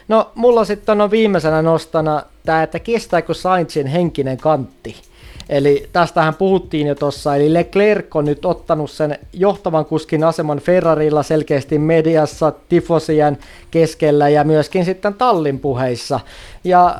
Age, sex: 20-39, male